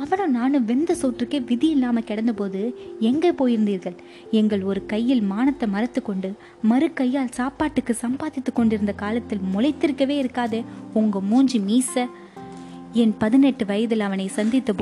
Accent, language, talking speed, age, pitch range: native, Tamil, 55 wpm, 20-39, 200-260 Hz